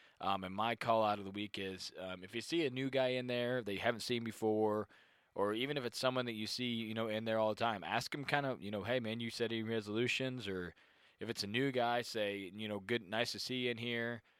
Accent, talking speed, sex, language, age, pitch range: American, 275 wpm, male, English, 20-39, 100-120 Hz